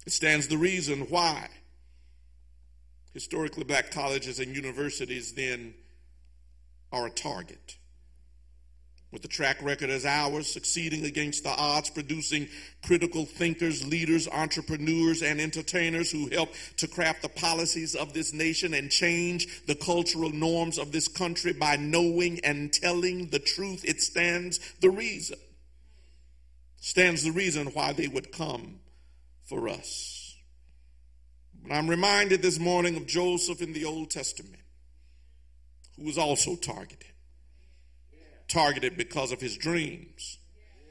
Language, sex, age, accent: English, male, 50-69, American